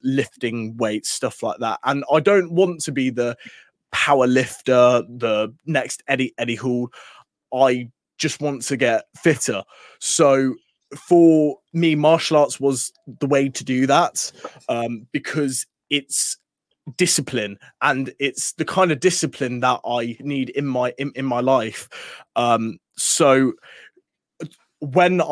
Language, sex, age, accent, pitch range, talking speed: English, male, 20-39, British, 125-145 Hz, 135 wpm